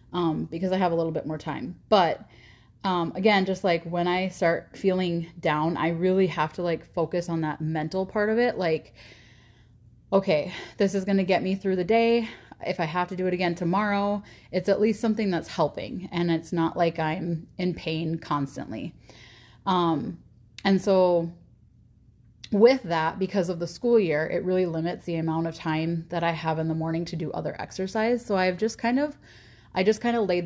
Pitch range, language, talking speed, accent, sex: 160-195 Hz, English, 200 wpm, American, female